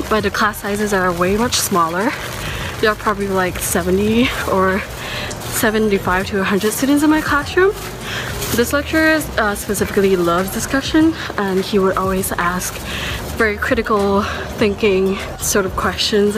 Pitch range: 185-240 Hz